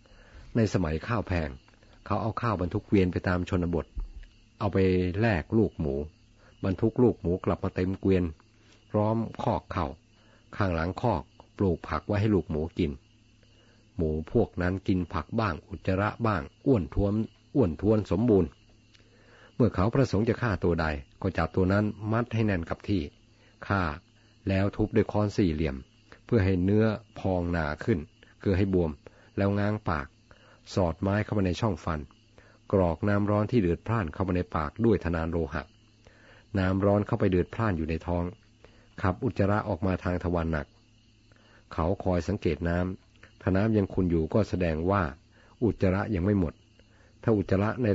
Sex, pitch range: male, 90-110 Hz